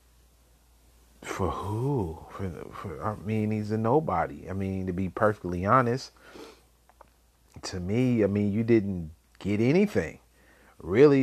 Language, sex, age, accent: English, male, 30-49, American